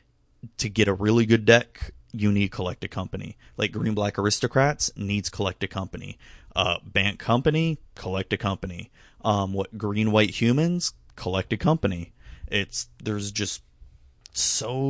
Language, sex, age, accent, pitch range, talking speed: English, male, 30-49, American, 95-115 Hz, 150 wpm